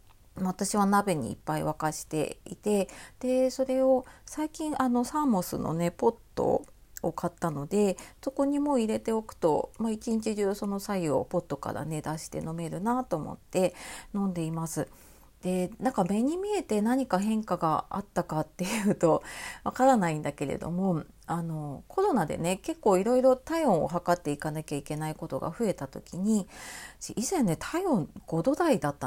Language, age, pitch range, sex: Japanese, 40-59, 160-230 Hz, female